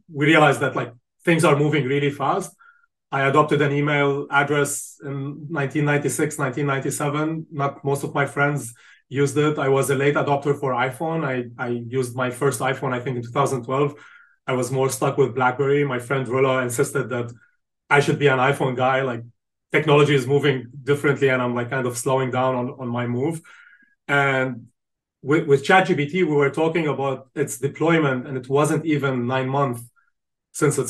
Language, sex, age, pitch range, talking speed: English, male, 30-49, 130-145 Hz, 180 wpm